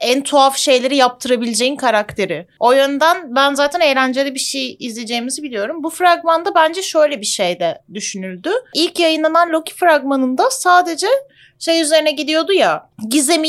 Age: 30-49